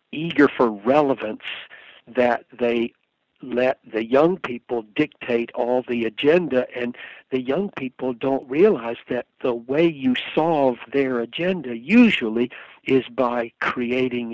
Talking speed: 125 wpm